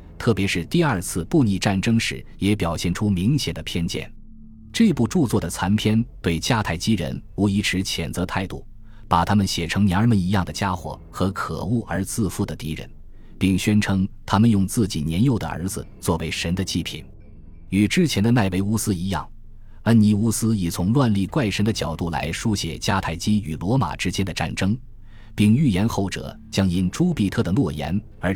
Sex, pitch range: male, 90-110 Hz